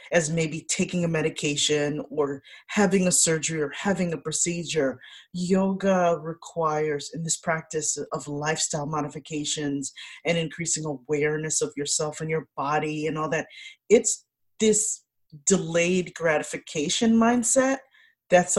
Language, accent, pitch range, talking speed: English, American, 145-180 Hz, 125 wpm